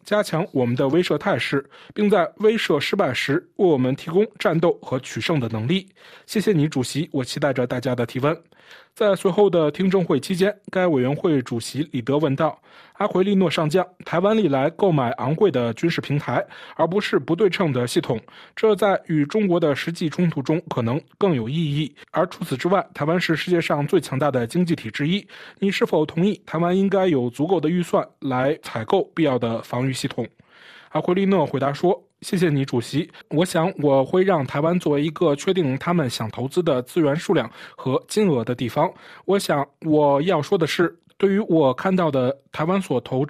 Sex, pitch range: male, 135-190 Hz